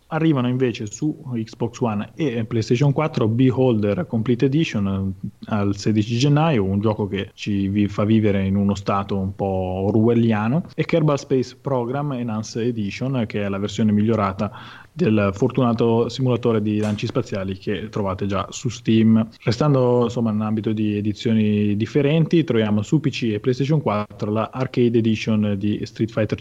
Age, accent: 20-39, native